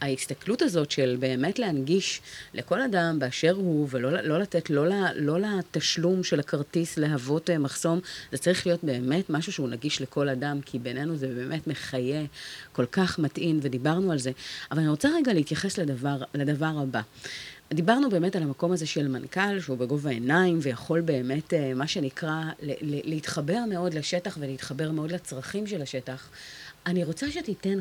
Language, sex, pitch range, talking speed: Hebrew, female, 140-185 Hz, 155 wpm